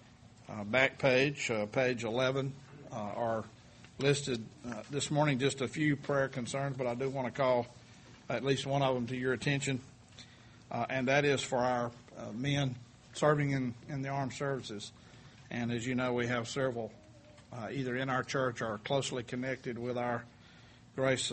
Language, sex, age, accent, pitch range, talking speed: English, male, 50-69, American, 120-135 Hz, 180 wpm